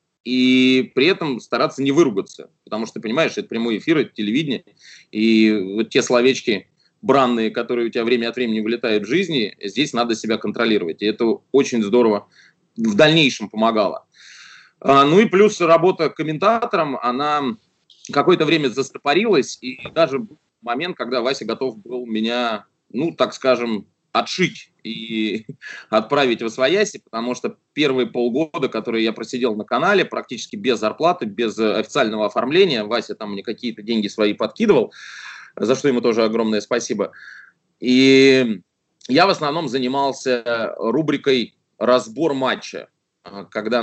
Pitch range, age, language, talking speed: 110-135 Hz, 20-39, Russian, 140 wpm